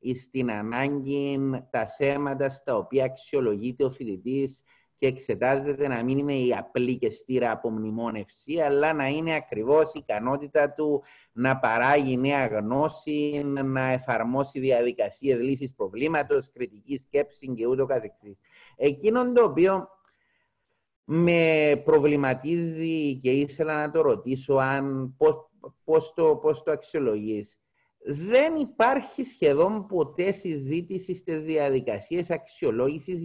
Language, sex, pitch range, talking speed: Greek, male, 130-185 Hz, 120 wpm